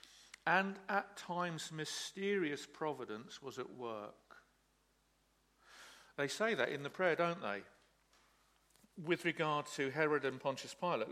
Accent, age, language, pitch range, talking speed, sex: British, 50-69, English, 140-185 Hz, 125 wpm, male